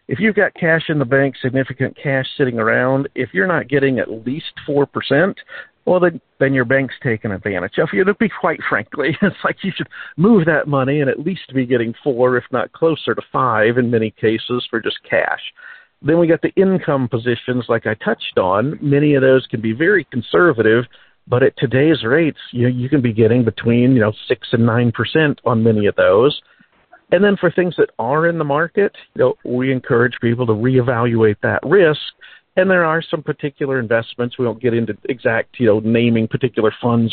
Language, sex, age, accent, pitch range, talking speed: English, male, 50-69, American, 115-155 Hz, 200 wpm